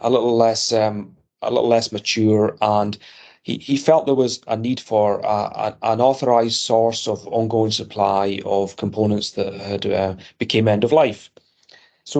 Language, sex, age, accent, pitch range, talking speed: English, male, 30-49, British, 105-115 Hz, 170 wpm